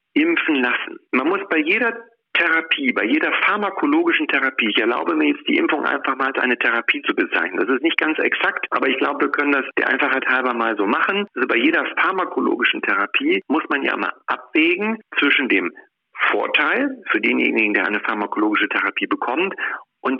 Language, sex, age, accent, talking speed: German, male, 50-69, German, 185 wpm